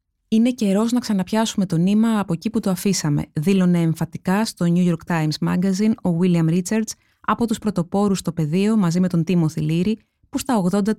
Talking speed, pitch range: 185 wpm, 170-215 Hz